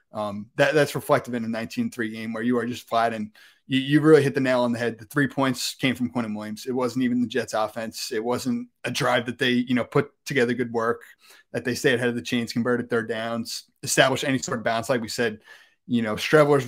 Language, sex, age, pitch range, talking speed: English, male, 30-49, 120-135 Hz, 250 wpm